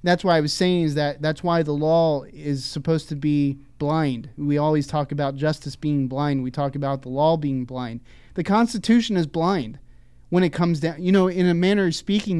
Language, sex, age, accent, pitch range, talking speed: English, male, 30-49, American, 140-165 Hz, 220 wpm